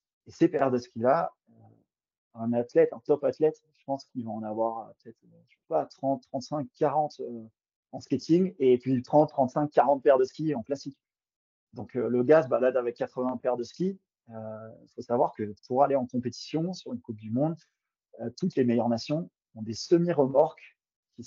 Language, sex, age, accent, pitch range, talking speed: French, male, 30-49, French, 115-140 Hz, 200 wpm